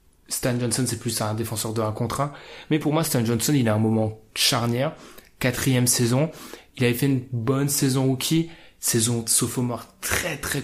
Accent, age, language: French, 20-39, French